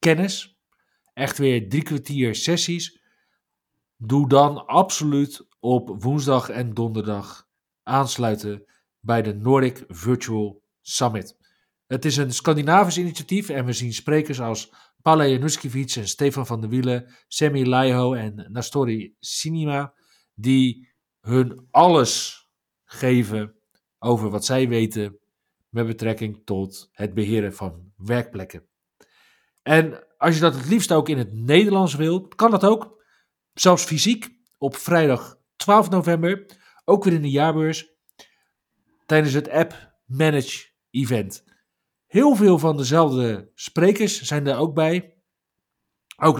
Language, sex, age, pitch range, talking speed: Dutch, male, 50-69, 120-155 Hz, 125 wpm